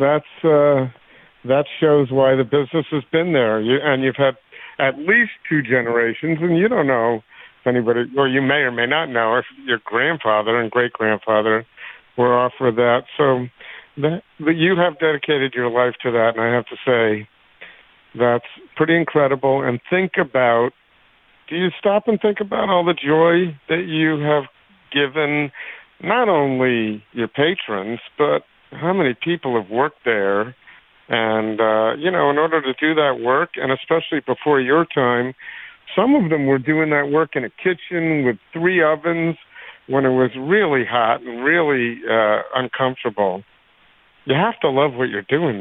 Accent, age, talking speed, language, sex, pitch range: American, 50-69, 170 wpm, English, male, 115-155 Hz